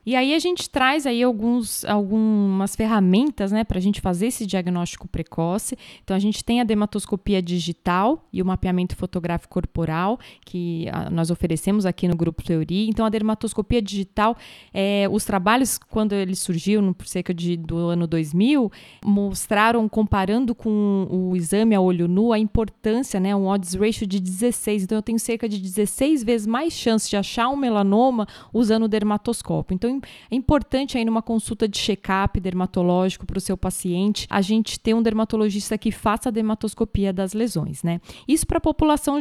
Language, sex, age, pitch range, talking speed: Portuguese, female, 20-39, 190-225 Hz, 175 wpm